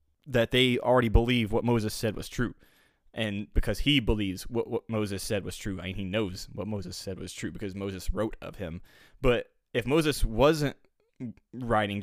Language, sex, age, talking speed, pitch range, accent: English, male, 20-39, 195 wpm, 100-125 Hz, American